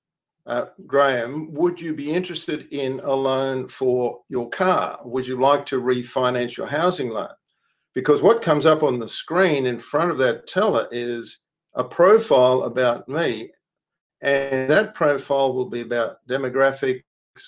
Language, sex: English, male